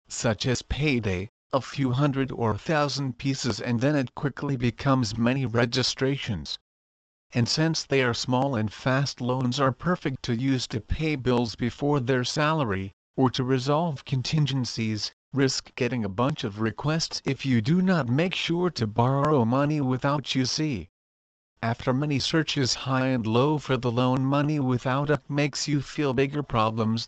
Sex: male